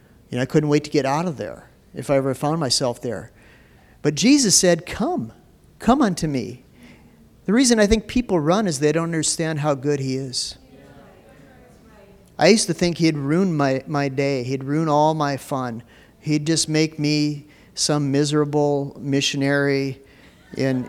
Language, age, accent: English, 40-59, American